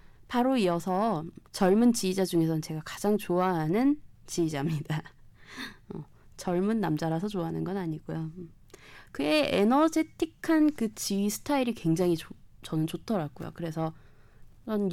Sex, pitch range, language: female, 160-230 Hz, Korean